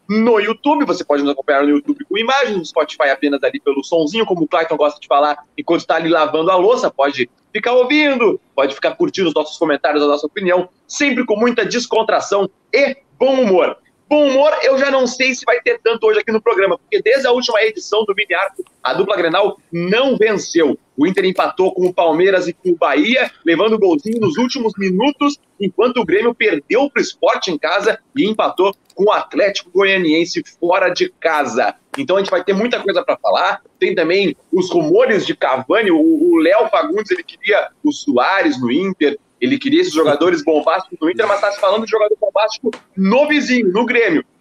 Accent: Brazilian